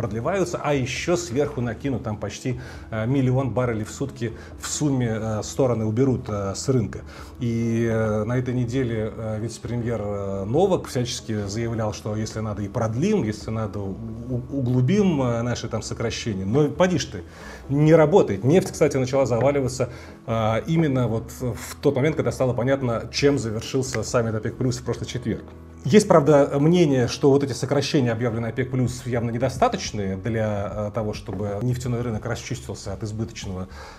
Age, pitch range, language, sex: 30-49, 105-130 Hz, Russian, male